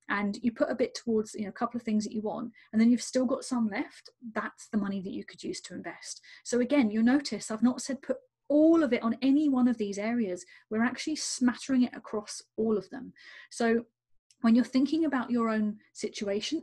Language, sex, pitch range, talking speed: English, female, 215-260 Hz, 230 wpm